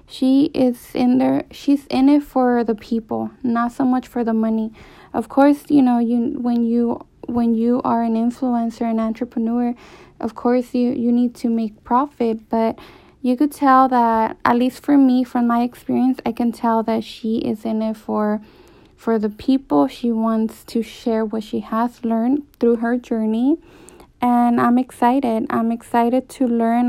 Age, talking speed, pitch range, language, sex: 10-29, 180 wpm, 230-255 Hz, English, female